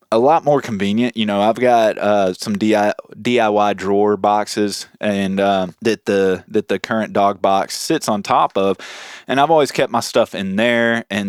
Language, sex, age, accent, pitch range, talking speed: English, male, 20-39, American, 95-105 Hz, 190 wpm